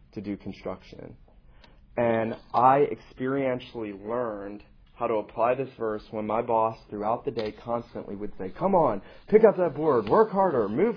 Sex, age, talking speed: male, 30-49, 165 wpm